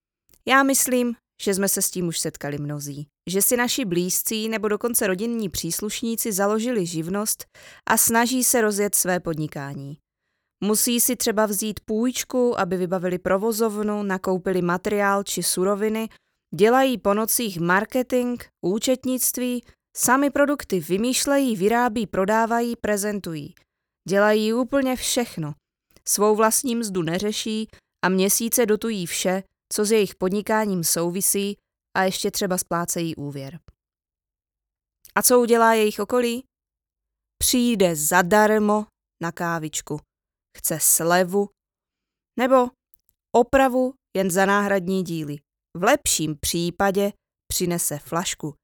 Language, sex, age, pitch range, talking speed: Czech, female, 20-39, 180-235 Hz, 115 wpm